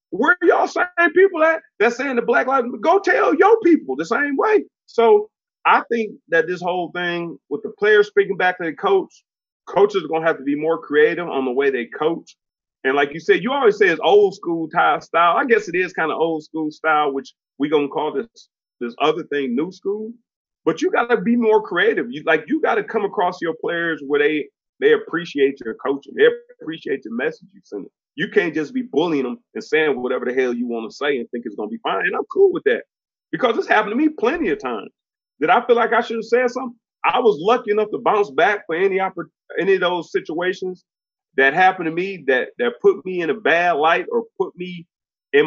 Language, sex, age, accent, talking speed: English, male, 30-49, American, 240 wpm